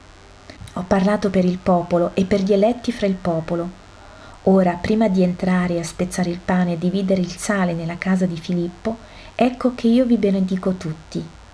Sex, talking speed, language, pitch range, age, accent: female, 175 wpm, Italian, 165-200 Hz, 40-59, native